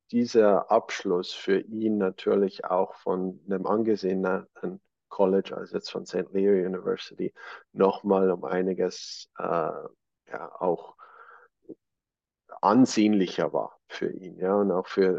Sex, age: male, 50-69